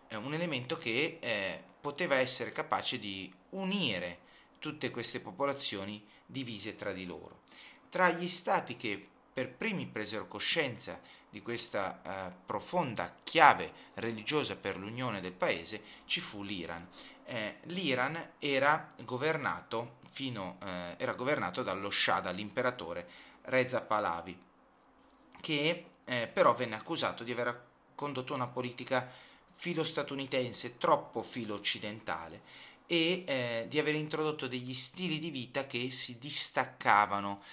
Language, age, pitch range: Italian, 30-49, 105-150 Hz